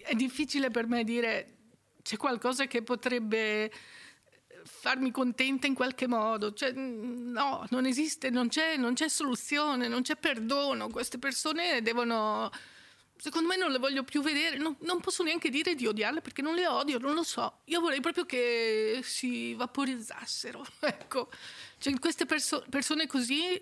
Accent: native